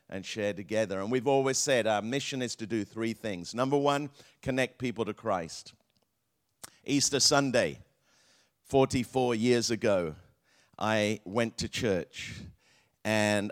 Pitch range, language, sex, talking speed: 105-130 Hz, English, male, 135 wpm